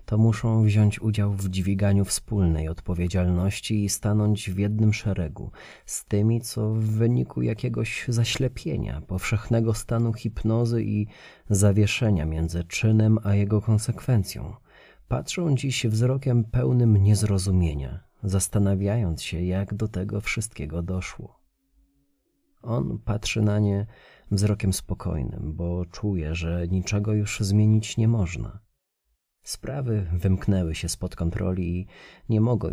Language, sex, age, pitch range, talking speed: Polish, male, 30-49, 90-110 Hz, 115 wpm